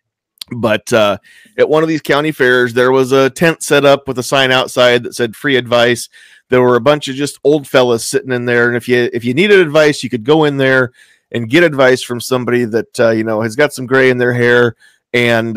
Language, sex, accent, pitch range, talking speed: English, male, American, 120-155 Hz, 240 wpm